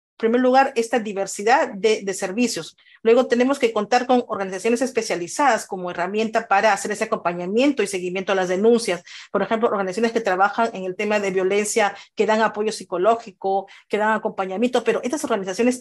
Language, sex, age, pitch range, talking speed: English, female, 40-59, 195-240 Hz, 175 wpm